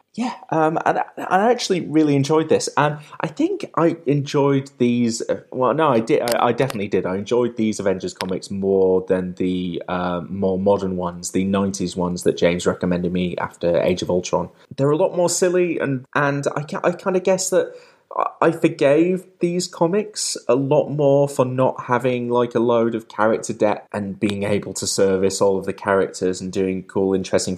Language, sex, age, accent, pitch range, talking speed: English, male, 20-39, British, 95-150 Hz, 200 wpm